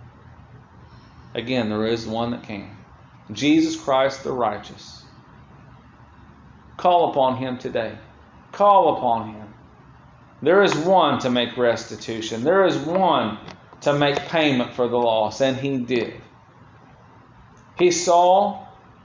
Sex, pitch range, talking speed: male, 115-165 Hz, 115 wpm